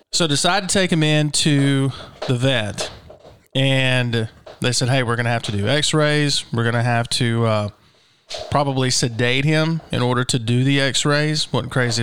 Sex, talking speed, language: male, 190 wpm, English